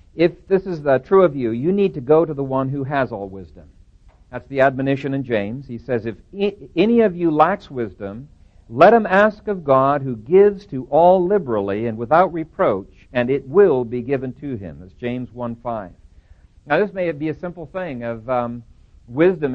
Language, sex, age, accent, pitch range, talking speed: English, male, 50-69, American, 120-180 Hz, 200 wpm